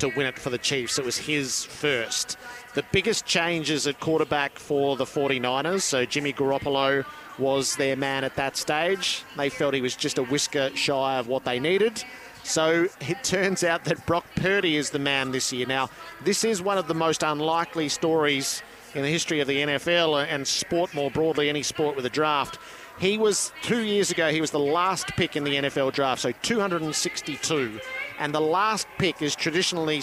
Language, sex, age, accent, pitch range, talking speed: English, male, 40-59, Australian, 135-170 Hz, 195 wpm